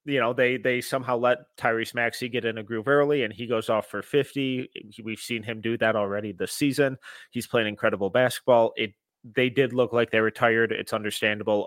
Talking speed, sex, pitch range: 205 wpm, male, 105-125 Hz